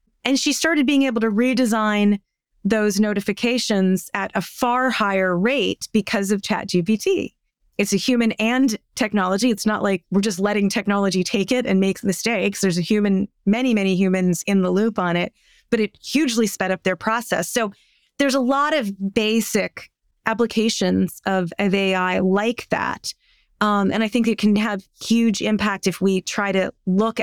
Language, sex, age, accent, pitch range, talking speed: English, female, 30-49, American, 195-230 Hz, 170 wpm